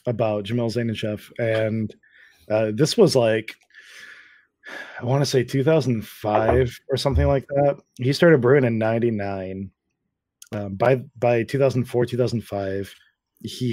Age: 20-39